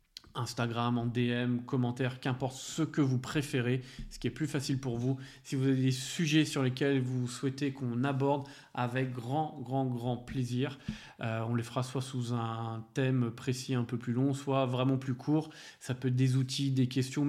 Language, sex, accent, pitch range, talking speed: French, male, French, 125-155 Hz, 195 wpm